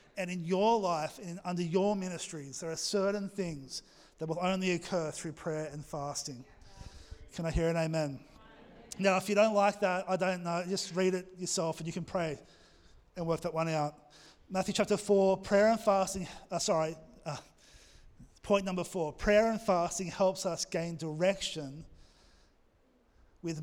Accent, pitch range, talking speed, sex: Australian, 155-190 Hz, 170 wpm, male